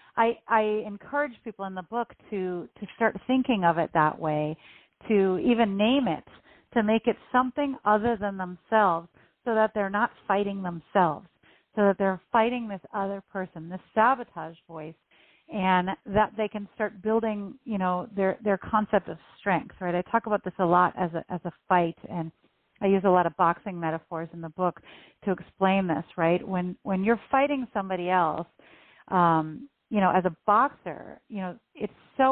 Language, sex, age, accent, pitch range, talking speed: English, female, 40-59, American, 180-220 Hz, 180 wpm